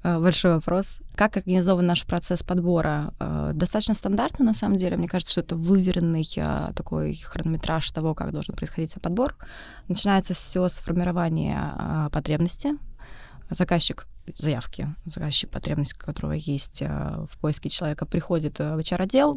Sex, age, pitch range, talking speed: female, 20-39, 155-185 Hz, 125 wpm